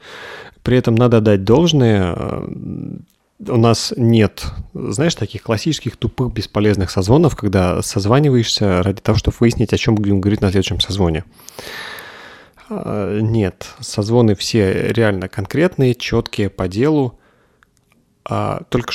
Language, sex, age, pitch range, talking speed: Russian, male, 30-49, 95-115 Hz, 115 wpm